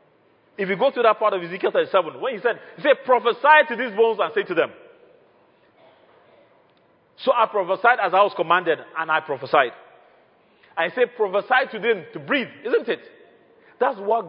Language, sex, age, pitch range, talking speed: English, male, 40-59, 180-290 Hz, 180 wpm